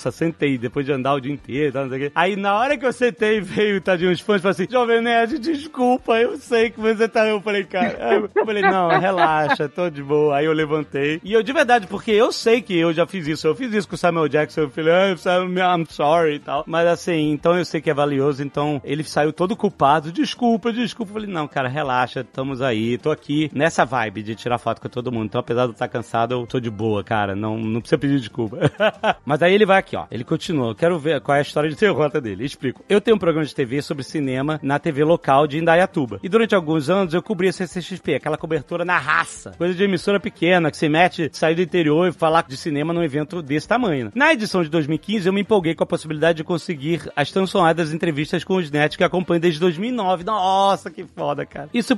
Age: 30-49